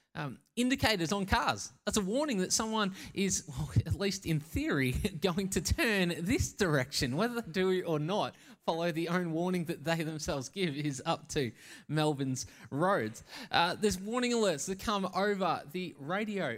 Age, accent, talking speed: 20-39, Australian, 165 wpm